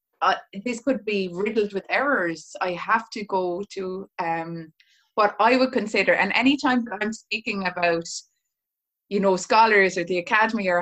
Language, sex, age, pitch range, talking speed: English, female, 20-39, 175-210 Hz, 165 wpm